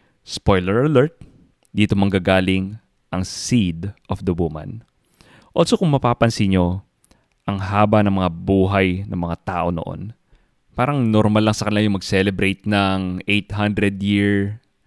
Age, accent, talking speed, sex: 20-39, Filipino, 125 wpm, male